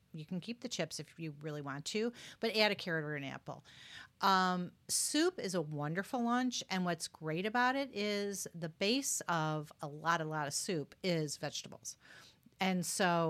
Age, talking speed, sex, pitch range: 40-59, 190 wpm, female, 155-200 Hz